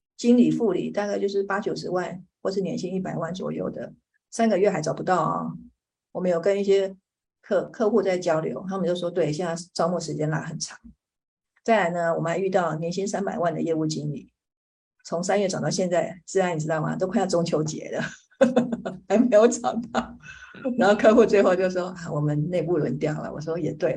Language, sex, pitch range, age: Chinese, female, 165-200 Hz, 50-69